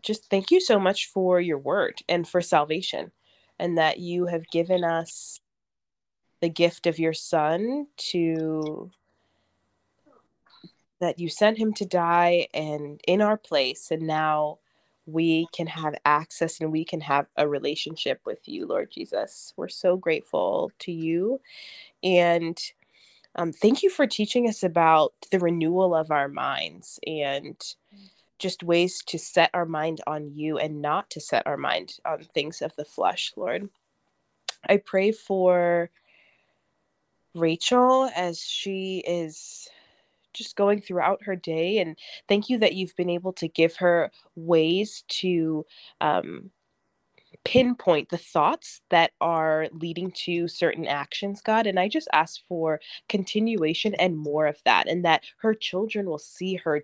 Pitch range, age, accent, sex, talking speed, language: 160-200 Hz, 20-39, American, female, 145 wpm, English